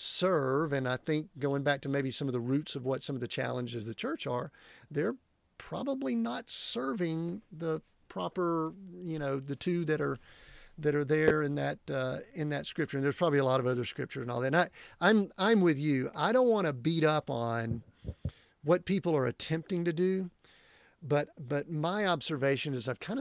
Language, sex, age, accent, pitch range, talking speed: English, male, 40-59, American, 140-175 Hz, 205 wpm